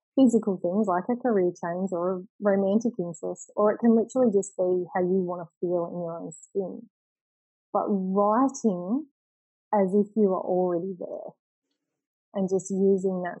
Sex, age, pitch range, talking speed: female, 20-39, 180-210 Hz, 165 wpm